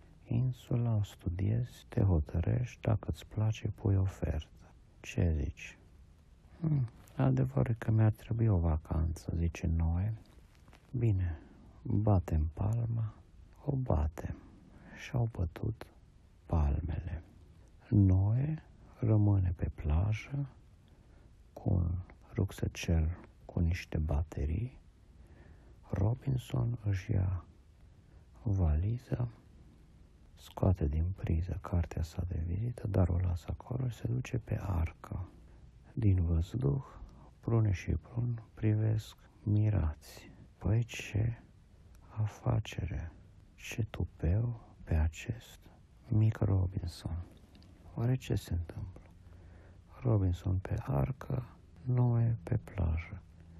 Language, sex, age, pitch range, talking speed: Romanian, male, 50-69, 85-110 Hz, 95 wpm